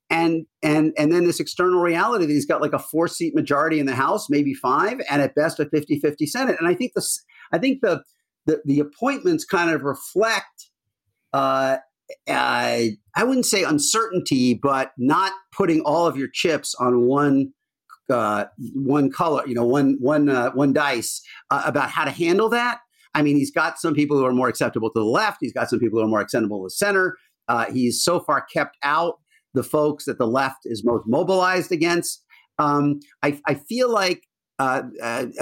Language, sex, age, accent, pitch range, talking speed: English, male, 50-69, American, 130-180 Hz, 195 wpm